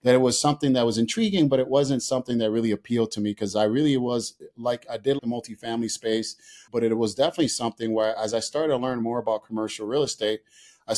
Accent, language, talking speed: American, English, 235 wpm